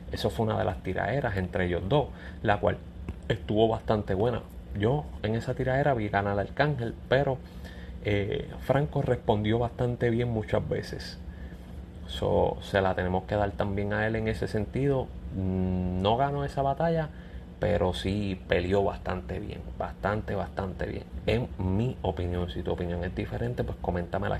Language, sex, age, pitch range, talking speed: Spanish, male, 30-49, 85-105 Hz, 155 wpm